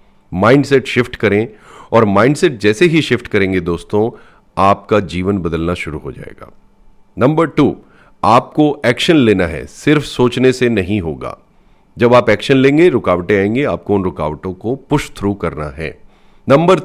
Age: 40-59